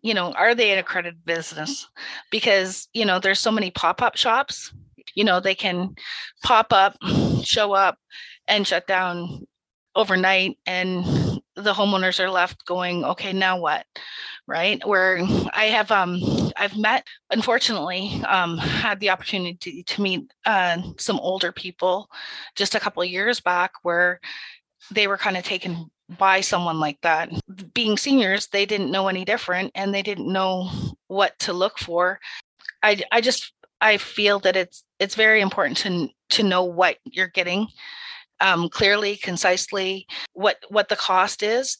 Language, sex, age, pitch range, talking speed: English, female, 30-49, 180-210 Hz, 160 wpm